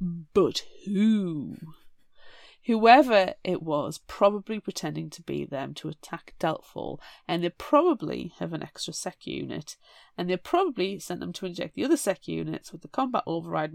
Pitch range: 170-250 Hz